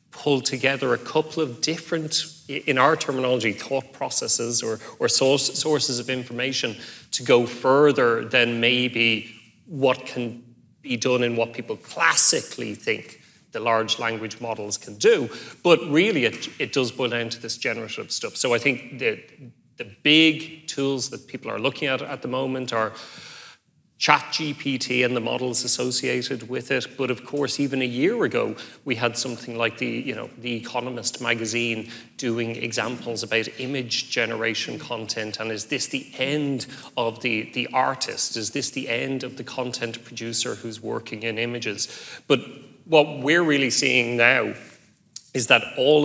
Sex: male